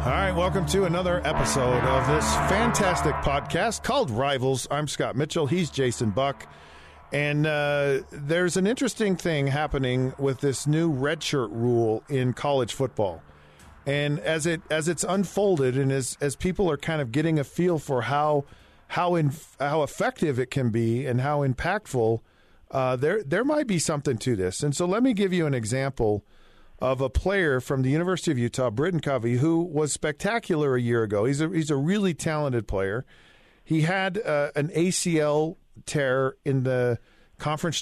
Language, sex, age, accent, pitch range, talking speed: English, male, 40-59, American, 130-170 Hz, 175 wpm